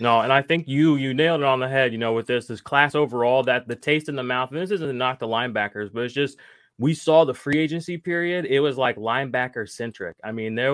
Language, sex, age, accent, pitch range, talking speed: English, male, 20-39, American, 115-140 Hz, 270 wpm